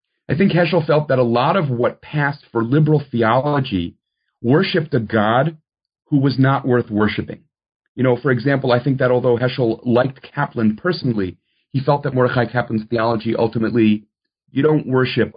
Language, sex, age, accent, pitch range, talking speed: English, male, 40-59, American, 105-135 Hz, 170 wpm